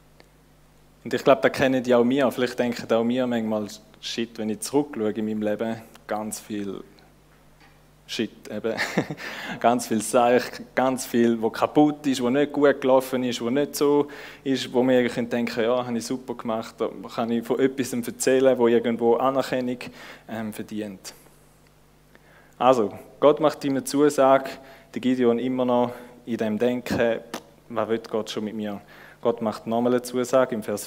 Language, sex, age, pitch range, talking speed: German, male, 20-39, 115-130 Hz, 170 wpm